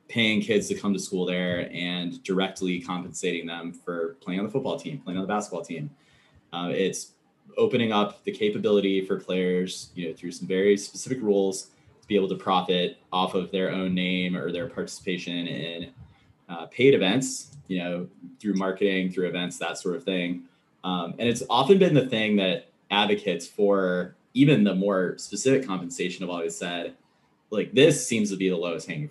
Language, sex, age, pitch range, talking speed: English, male, 20-39, 90-105 Hz, 185 wpm